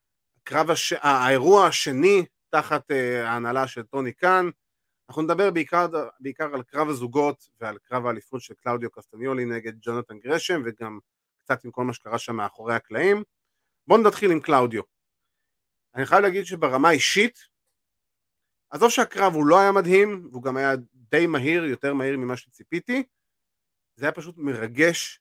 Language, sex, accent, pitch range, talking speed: Hebrew, male, native, 120-155 Hz, 150 wpm